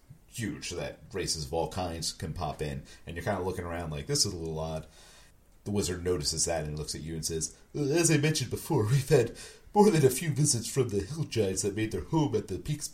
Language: English